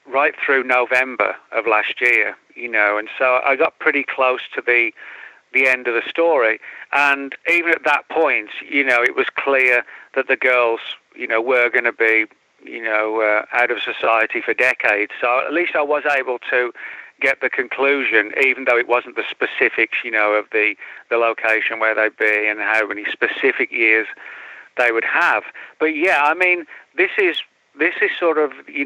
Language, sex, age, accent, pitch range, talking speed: English, male, 40-59, British, 115-145 Hz, 190 wpm